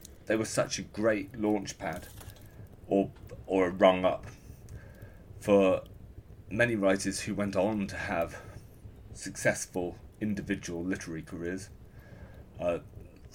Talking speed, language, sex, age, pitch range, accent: 110 wpm, English, male, 30-49, 95-105 Hz, British